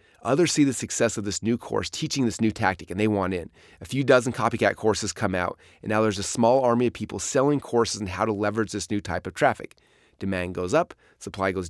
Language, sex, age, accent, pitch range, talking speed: English, male, 30-49, American, 100-120 Hz, 240 wpm